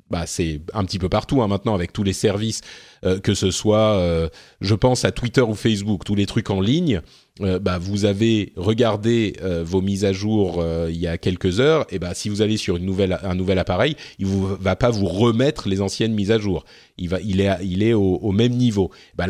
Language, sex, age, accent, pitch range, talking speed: French, male, 30-49, French, 95-120 Hz, 245 wpm